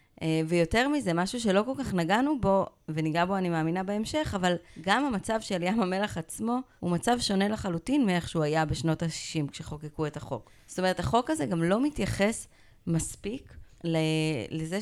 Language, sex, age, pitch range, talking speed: Hebrew, female, 30-49, 155-205 Hz, 165 wpm